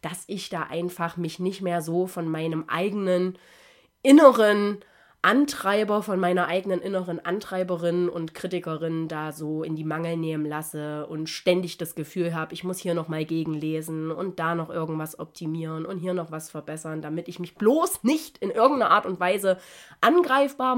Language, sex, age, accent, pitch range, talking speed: German, female, 30-49, German, 170-205 Hz, 170 wpm